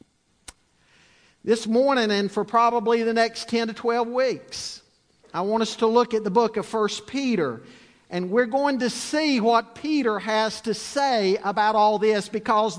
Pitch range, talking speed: 220-280 Hz, 170 wpm